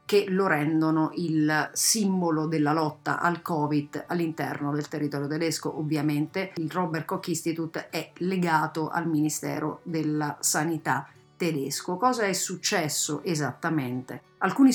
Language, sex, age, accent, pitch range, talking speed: Italian, female, 40-59, native, 150-180 Hz, 120 wpm